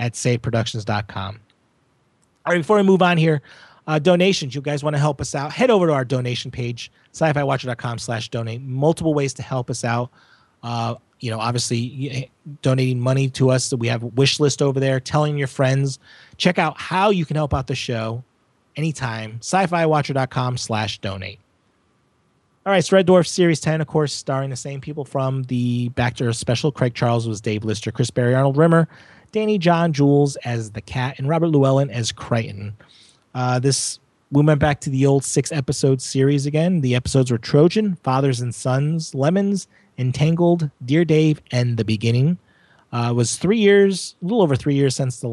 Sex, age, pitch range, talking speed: male, 30-49, 120-155 Hz, 185 wpm